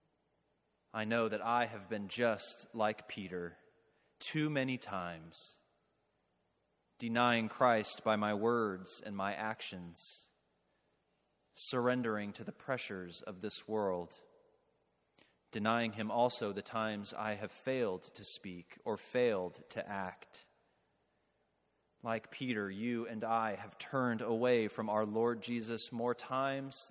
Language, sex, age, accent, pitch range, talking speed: English, male, 30-49, American, 100-125 Hz, 125 wpm